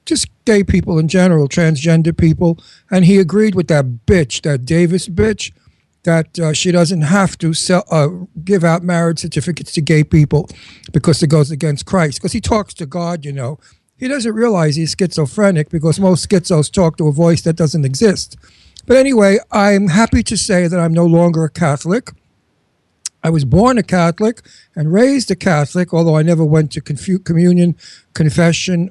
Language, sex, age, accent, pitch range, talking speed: English, male, 60-79, American, 155-185 Hz, 175 wpm